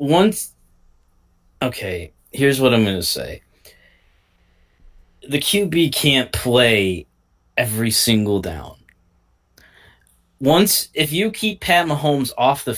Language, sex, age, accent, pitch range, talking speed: English, male, 20-39, American, 85-130 Hz, 110 wpm